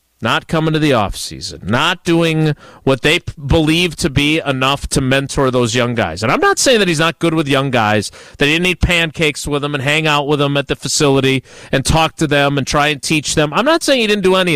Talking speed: 255 wpm